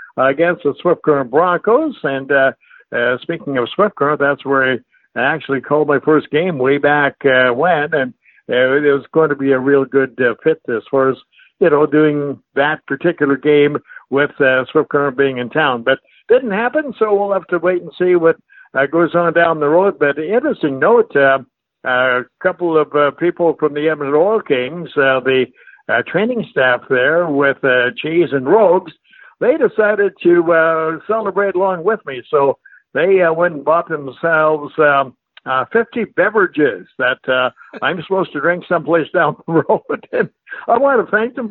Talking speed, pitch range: 190 wpm, 135-175 Hz